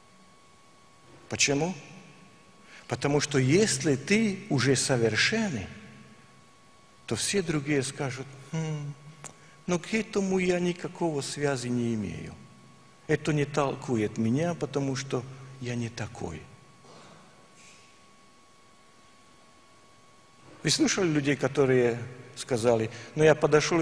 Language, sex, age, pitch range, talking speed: Russian, male, 50-69, 130-190 Hz, 90 wpm